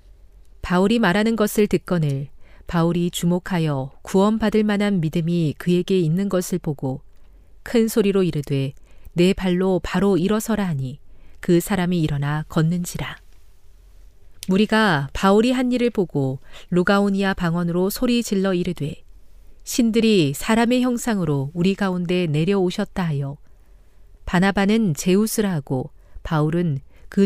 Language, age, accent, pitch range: Korean, 40-59, native, 145-210 Hz